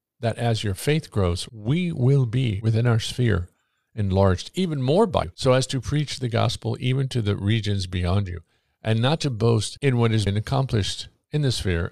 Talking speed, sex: 200 wpm, male